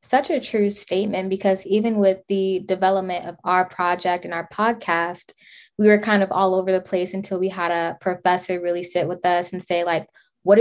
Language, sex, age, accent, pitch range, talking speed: English, female, 20-39, American, 175-195 Hz, 205 wpm